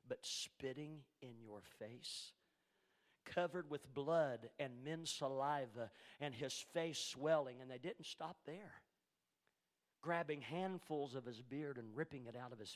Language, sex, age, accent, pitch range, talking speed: English, male, 50-69, American, 125-155 Hz, 145 wpm